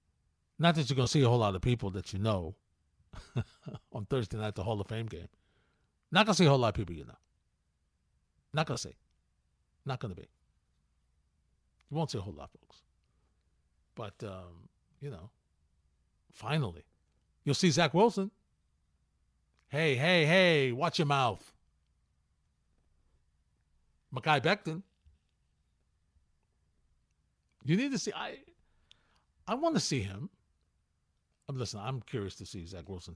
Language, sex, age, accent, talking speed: English, male, 50-69, American, 150 wpm